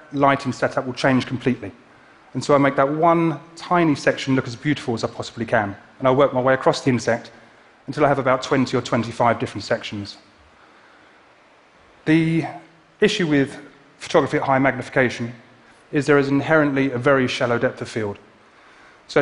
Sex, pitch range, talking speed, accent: male, 125-150 Hz, 170 wpm, British